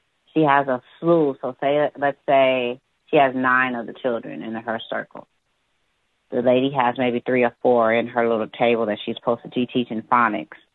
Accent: American